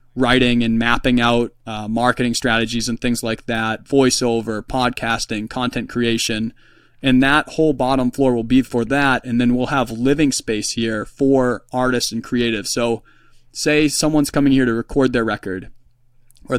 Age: 20-39